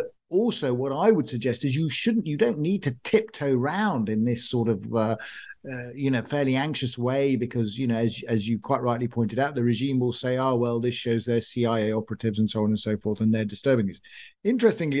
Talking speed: 230 wpm